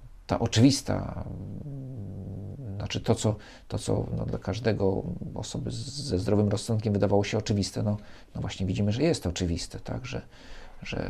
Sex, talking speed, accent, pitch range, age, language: male, 155 wpm, native, 95-115 Hz, 50-69, Polish